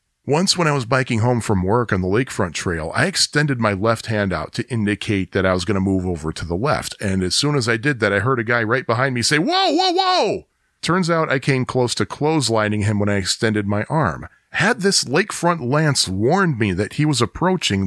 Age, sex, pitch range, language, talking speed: 40-59, male, 100-135 Hz, English, 240 wpm